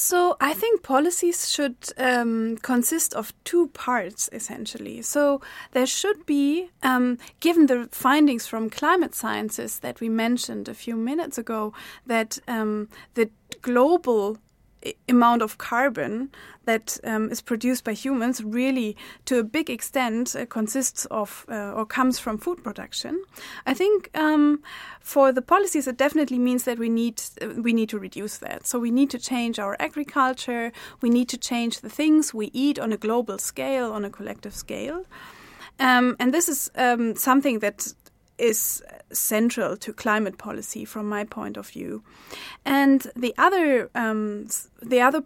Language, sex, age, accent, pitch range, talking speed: English, female, 20-39, German, 230-280 Hz, 160 wpm